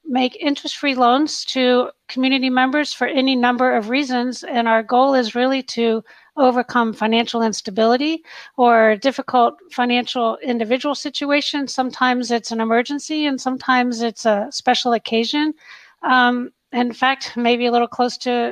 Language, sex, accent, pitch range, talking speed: English, female, American, 230-270 Hz, 140 wpm